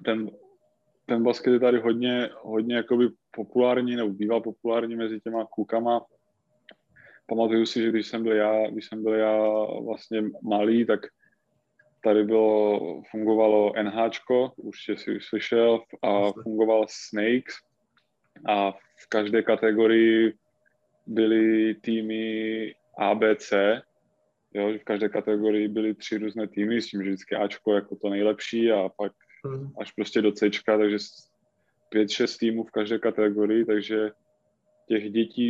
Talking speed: 130 wpm